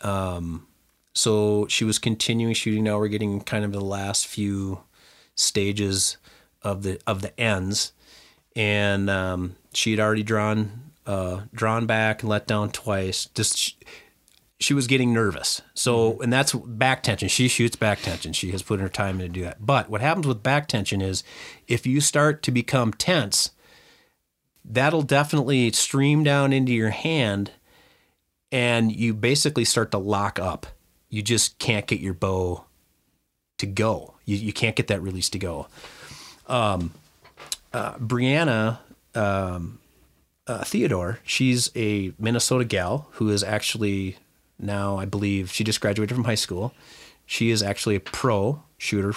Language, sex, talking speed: English, male, 155 wpm